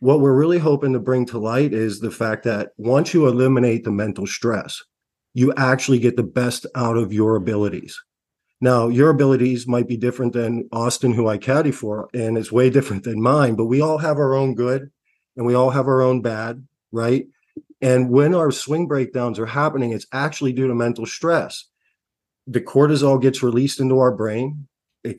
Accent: American